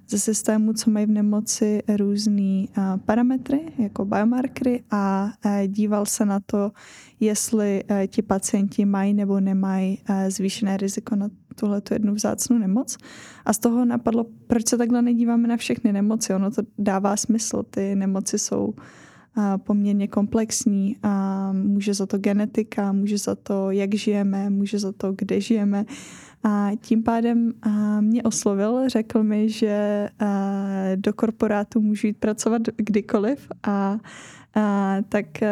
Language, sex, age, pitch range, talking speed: Czech, female, 10-29, 200-225 Hz, 130 wpm